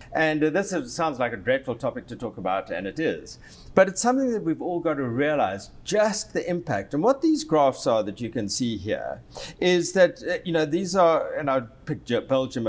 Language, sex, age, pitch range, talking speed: English, male, 50-69, 135-190 Hz, 215 wpm